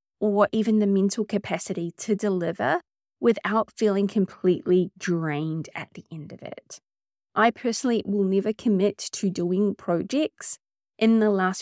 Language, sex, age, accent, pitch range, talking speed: English, female, 20-39, Australian, 180-215 Hz, 140 wpm